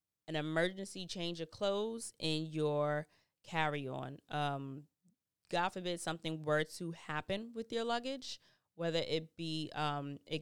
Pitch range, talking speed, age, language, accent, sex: 145-175 Hz, 130 wpm, 20-39, English, American, female